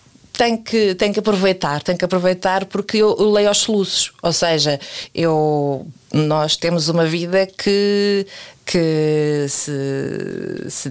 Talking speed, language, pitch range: 125 wpm, Portuguese, 155-195 Hz